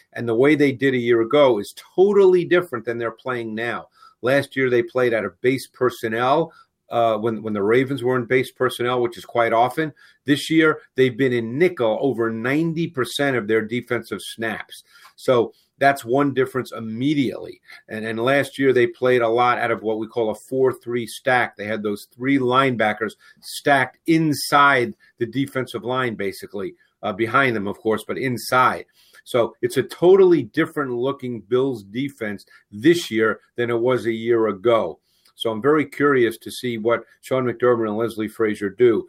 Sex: male